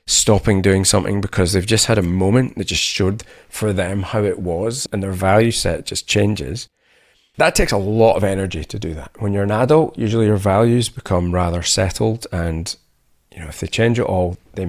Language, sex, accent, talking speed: English, male, British, 210 wpm